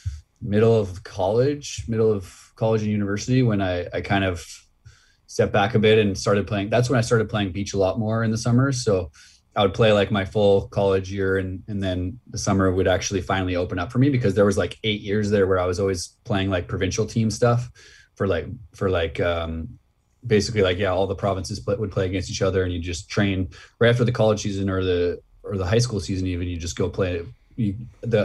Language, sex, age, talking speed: English, male, 20-39, 230 wpm